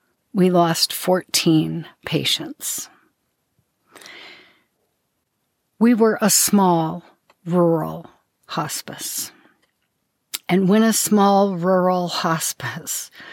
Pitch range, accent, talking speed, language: 160-185 Hz, American, 70 wpm, English